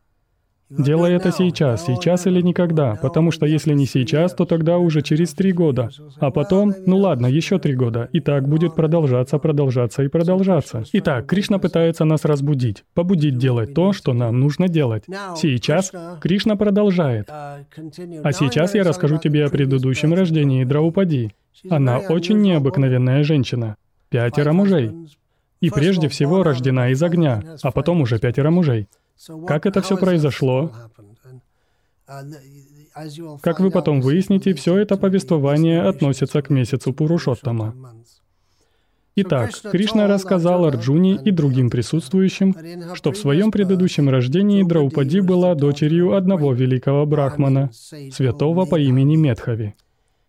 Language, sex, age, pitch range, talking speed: Russian, male, 20-39, 130-175 Hz, 130 wpm